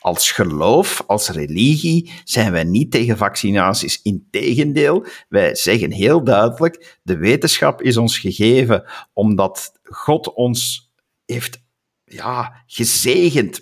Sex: male